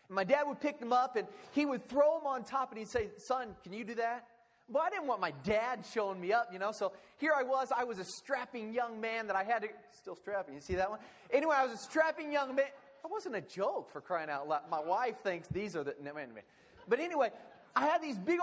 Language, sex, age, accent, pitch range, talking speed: English, male, 30-49, American, 225-310 Hz, 275 wpm